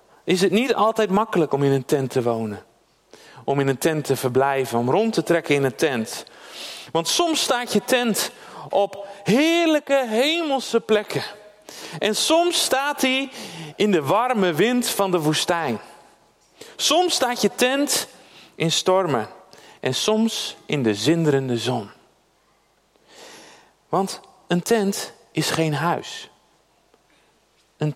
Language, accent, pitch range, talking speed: Dutch, Dutch, 140-220 Hz, 135 wpm